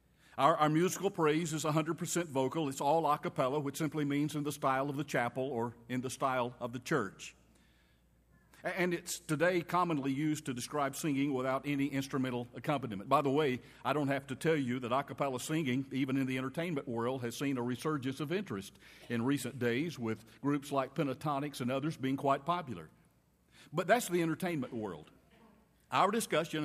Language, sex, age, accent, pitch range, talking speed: English, male, 50-69, American, 130-160 Hz, 185 wpm